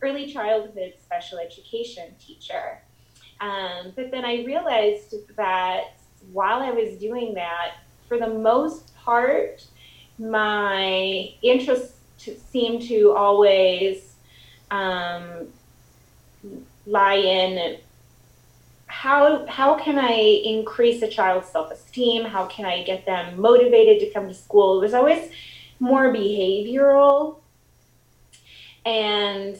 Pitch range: 185-235 Hz